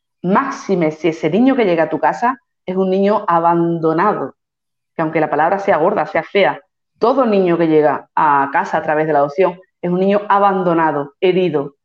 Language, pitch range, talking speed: Spanish, 160-195 Hz, 185 wpm